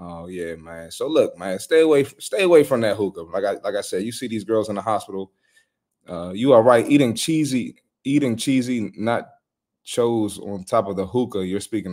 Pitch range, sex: 95-135 Hz, male